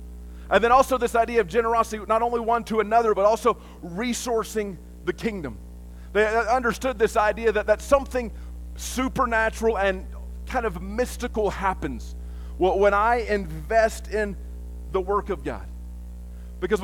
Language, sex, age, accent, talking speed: English, male, 40-59, American, 145 wpm